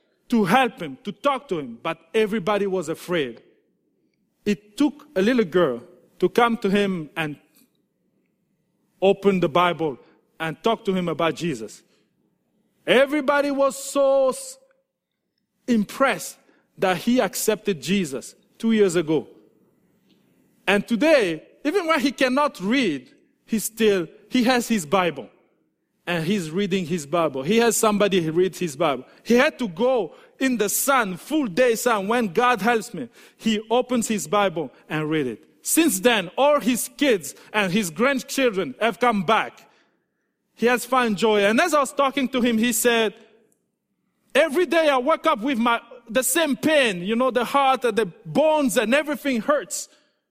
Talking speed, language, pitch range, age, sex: 155 wpm, English, 200-275 Hz, 50-69, male